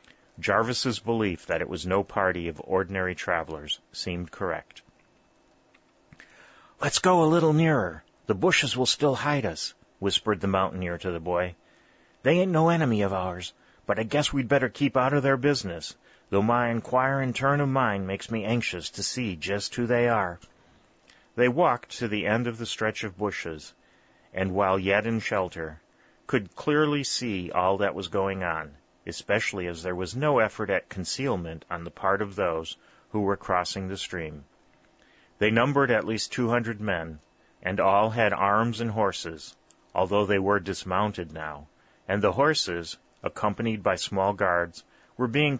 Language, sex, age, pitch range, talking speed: English, male, 30-49, 90-120 Hz, 170 wpm